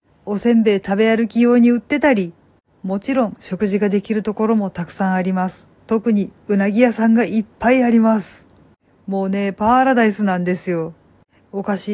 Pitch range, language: 190-235 Hz, Japanese